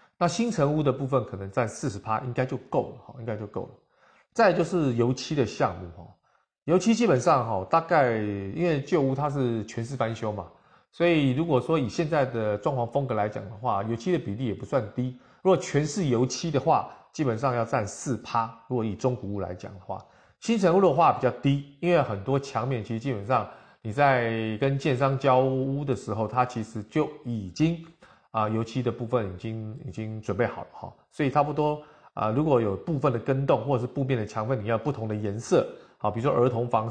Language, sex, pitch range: Chinese, male, 110-140 Hz